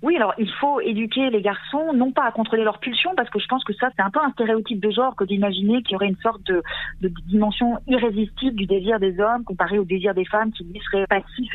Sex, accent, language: female, French, French